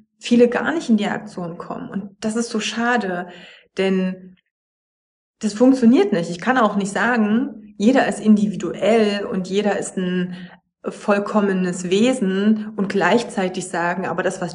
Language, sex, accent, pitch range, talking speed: German, female, German, 185-225 Hz, 150 wpm